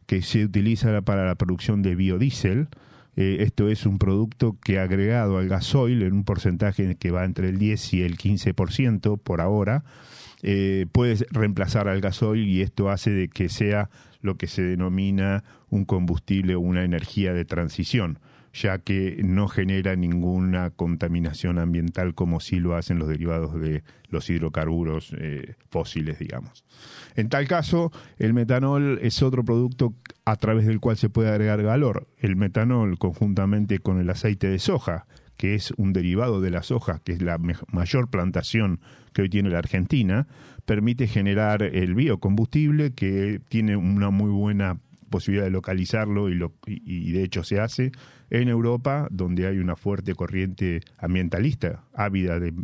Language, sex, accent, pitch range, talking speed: Spanish, male, Argentinian, 95-120 Hz, 165 wpm